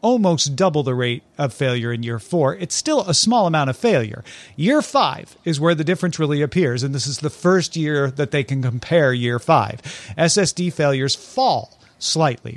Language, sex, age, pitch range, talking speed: English, male, 40-59, 130-175 Hz, 190 wpm